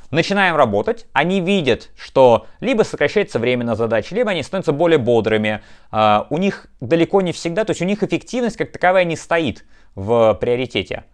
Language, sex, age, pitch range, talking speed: Russian, male, 20-39, 115-165 Hz, 165 wpm